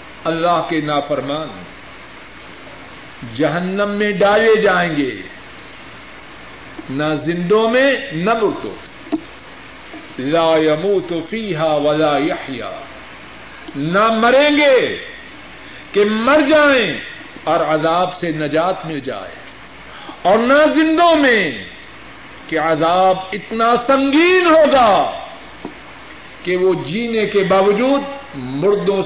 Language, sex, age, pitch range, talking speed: Urdu, male, 50-69, 165-250 Hz, 95 wpm